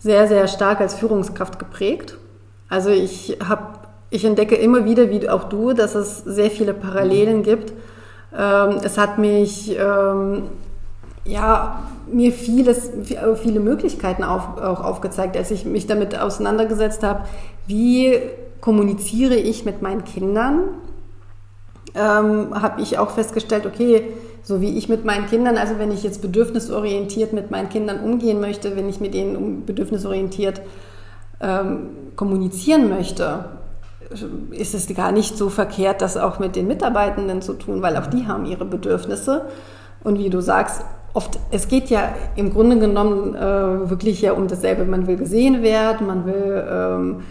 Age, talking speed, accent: 40-59, 150 wpm, German